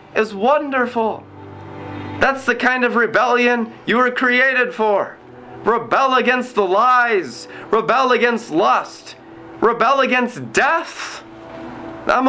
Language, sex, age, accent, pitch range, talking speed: English, male, 20-39, American, 180-265 Hz, 105 wpm